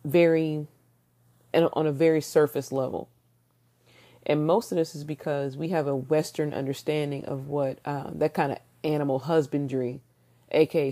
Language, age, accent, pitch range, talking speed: English, 30-49, American, 130-160 Hz, 145 wpm